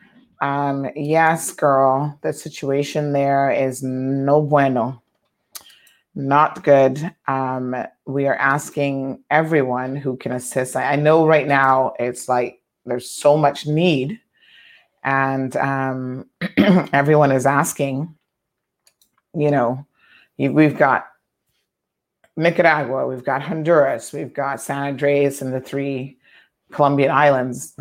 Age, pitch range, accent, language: 30-49, 130-150 Hz, American, English